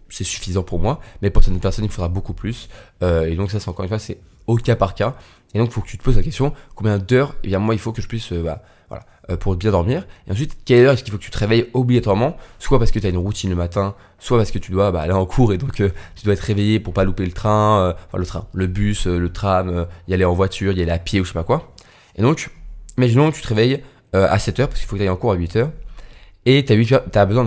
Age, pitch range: 20-39, 95-120 Hz